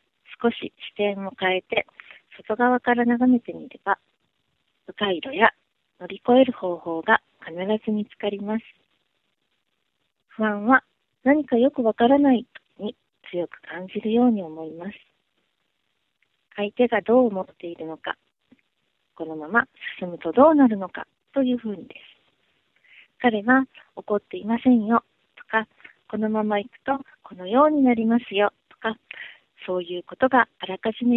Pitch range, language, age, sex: 195-250 Hz, Japanese, 40-59, female